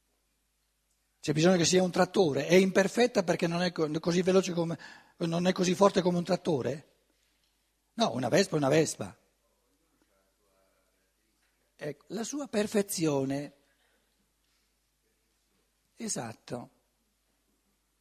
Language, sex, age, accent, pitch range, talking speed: Italian, male, 60-79, native, 160-210 Hz, 105 wpm